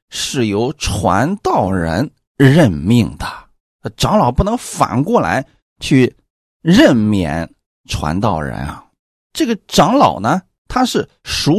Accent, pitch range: native, 95-140 Hz